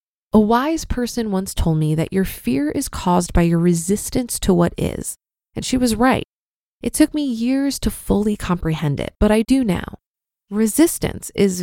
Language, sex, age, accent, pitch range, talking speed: English, female, 20-39, American, 195-255 Hz, 180 wpm